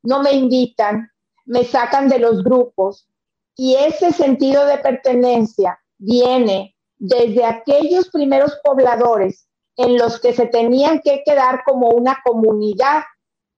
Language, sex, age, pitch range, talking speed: Spanish, female, 40-59, 220-275 Hz, 125 wpm